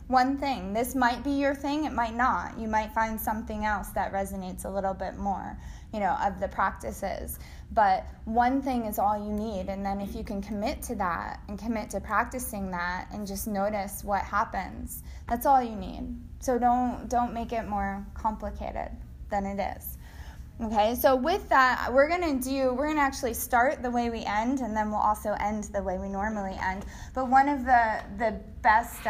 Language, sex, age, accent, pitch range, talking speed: English, female, 20-39, American, 190-230 Hz, 200 wpm